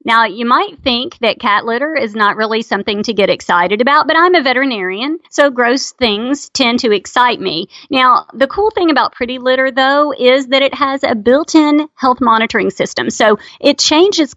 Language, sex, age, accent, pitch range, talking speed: English, female, 40-59, American, 215-300 Hz, 190 wpm